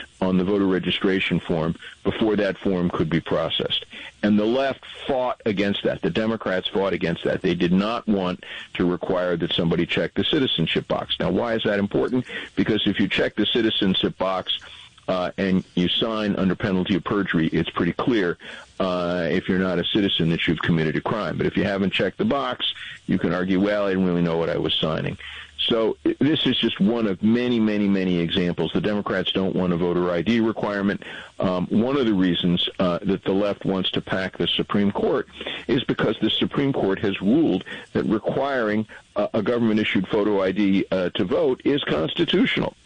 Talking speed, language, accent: 195 wpm, English, American